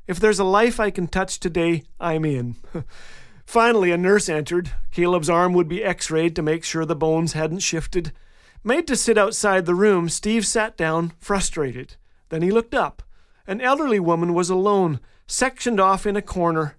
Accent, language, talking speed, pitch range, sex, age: American, English, 180 wpm, 155-200 Hz, male, 40-59